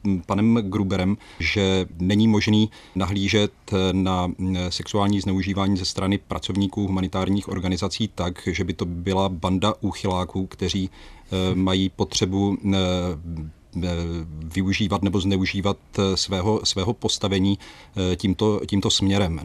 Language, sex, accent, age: Czech, male, native, 40-59